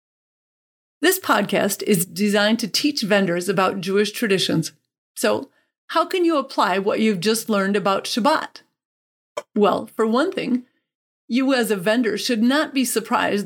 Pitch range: 200-245 Hz